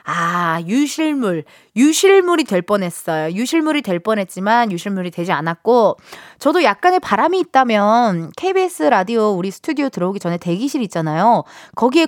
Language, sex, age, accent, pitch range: Korean, female, 20-39, native, 195-310 Hz